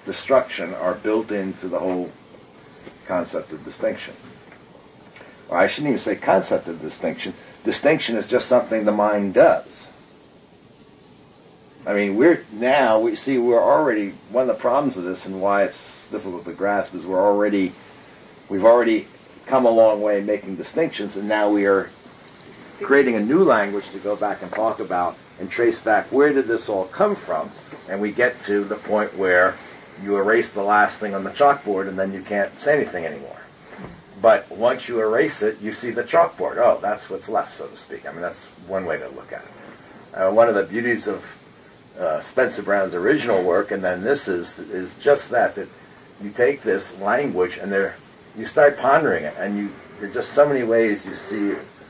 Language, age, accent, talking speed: English, 50-69, American, 190 wpm